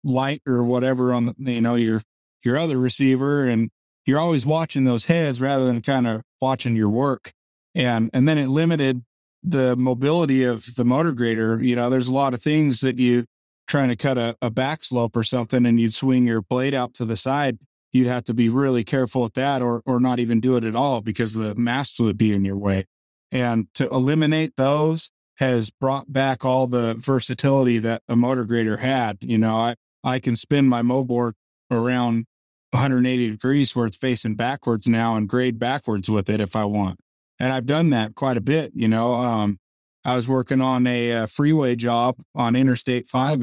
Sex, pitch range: male, 115-135 Hz